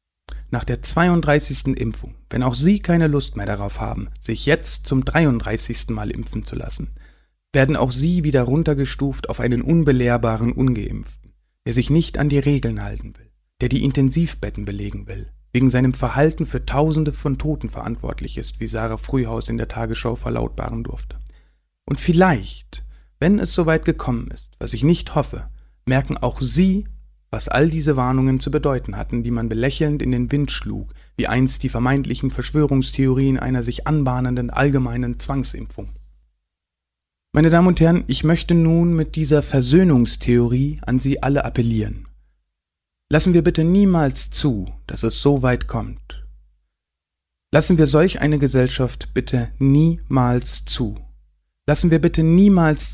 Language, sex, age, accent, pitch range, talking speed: German, male, 40-59, German, 110-150 Hz, 150 wpm